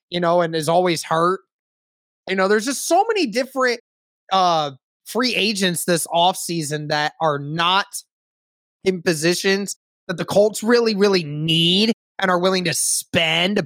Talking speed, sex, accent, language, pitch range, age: 150 wpm, male, American, English, 175-225 Hz, 20-39